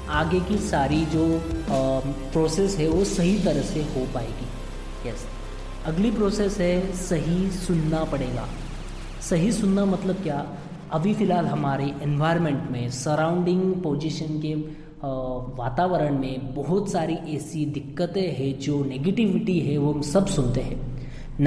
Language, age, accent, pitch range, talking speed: Hindi, 20-39, native, 135-175 Hz, 130 wpm